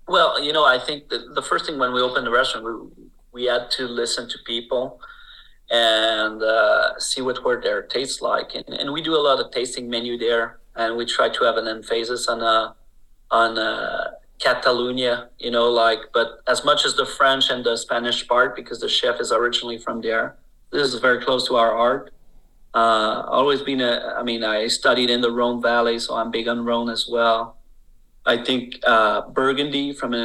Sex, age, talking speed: male, 40-59, 205 wpm